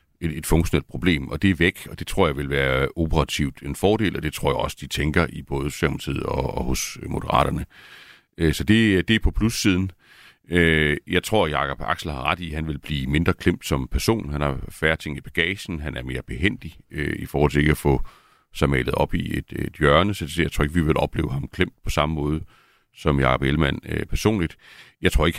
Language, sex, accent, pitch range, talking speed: Danish, male, native, 75-90 Hz, 215 wpm